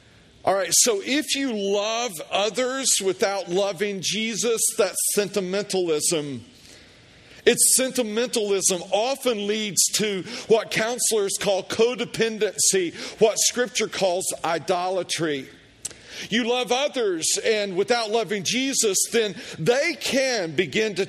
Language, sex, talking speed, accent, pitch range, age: English, male, 105 wpm, American, 200-260 Hz, 40-59